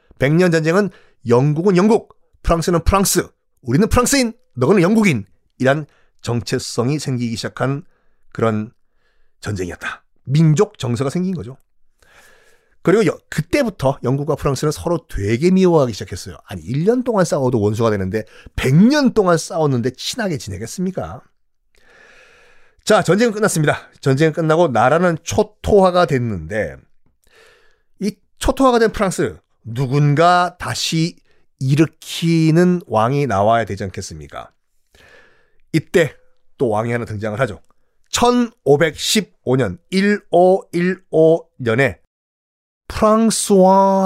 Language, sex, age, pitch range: Korean, male, 40-59, 120-190 Hz